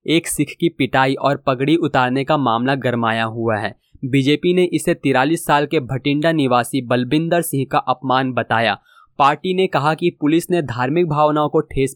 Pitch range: 135-170 Hz